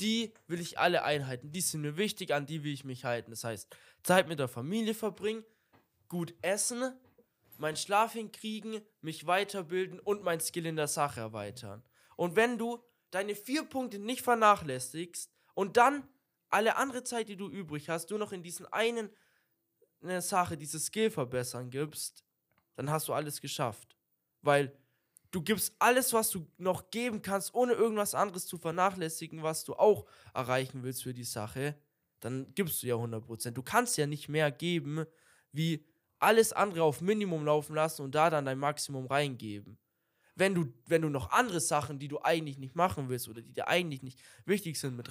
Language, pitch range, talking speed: German, 135-200 Hz, 180 wpm